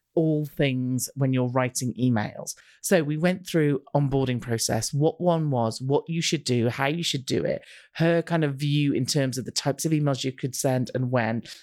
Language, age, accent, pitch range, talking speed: English, 30-49, British, 135-175 Hz, 205 wpm